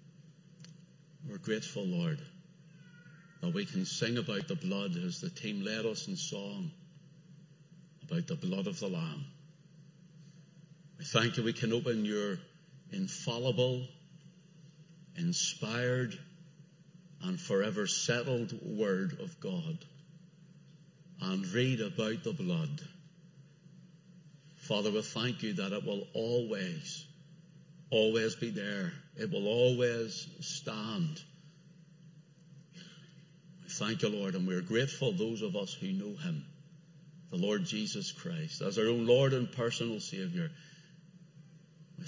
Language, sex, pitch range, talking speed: English, male, 150-170 Hz, 120 wpm